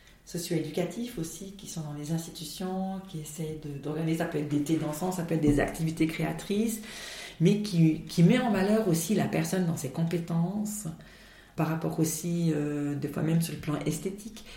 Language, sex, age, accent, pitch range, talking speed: French, female, 40-59, French, 155-185 Hz, 190 wpm